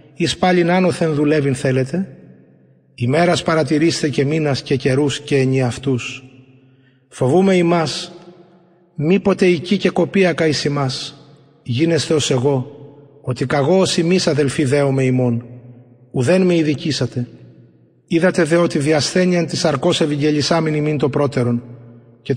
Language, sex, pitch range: Greek, male, 130-170 Hz